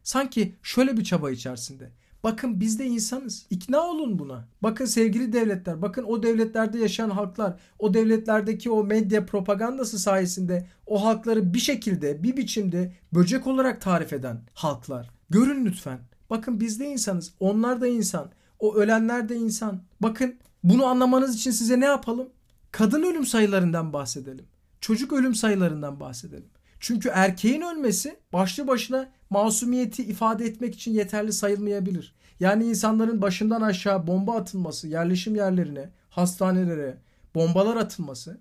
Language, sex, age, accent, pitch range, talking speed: Turkish, male, 50-69, native, 190-240 Hz, 135 wpm